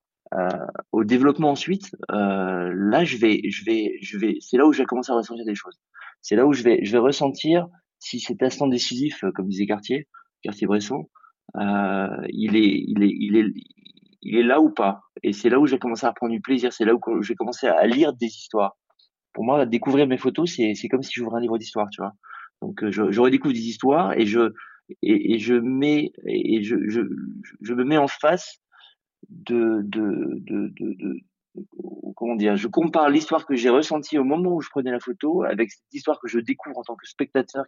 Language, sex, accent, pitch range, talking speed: French, male, French, 110-150 Hz, 220 wpm